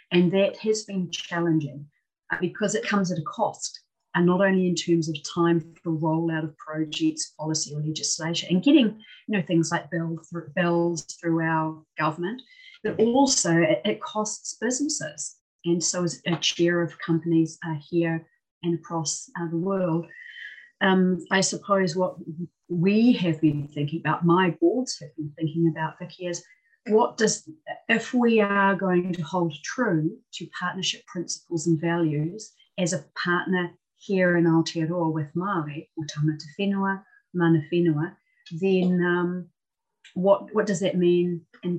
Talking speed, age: 145 wpm, 40-59